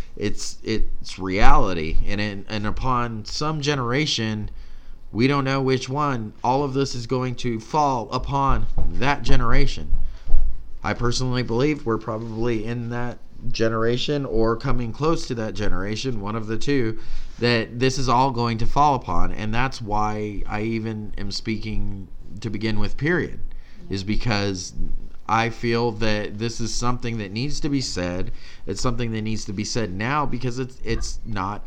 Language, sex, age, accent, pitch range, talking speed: English, male, 30-49, American, 100-125 Hz, 160 wpm